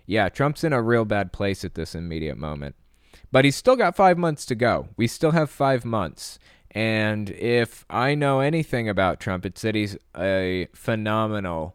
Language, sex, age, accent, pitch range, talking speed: English, male, 20-39, American, 85-110 Hz, 185 wpm